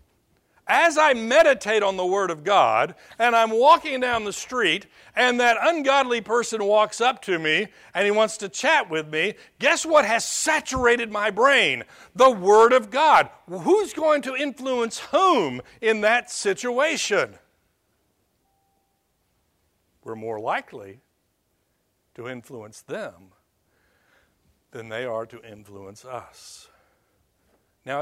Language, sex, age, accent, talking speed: English, male, 60-79, American, 130 wpm